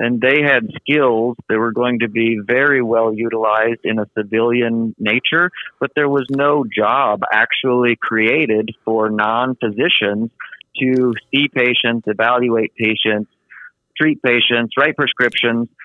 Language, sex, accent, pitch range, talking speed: English, male, American, 110-130 Hz, 130 wpm